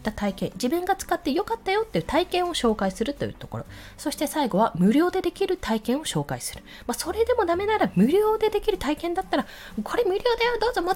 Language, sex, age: Japanese, female, 20-39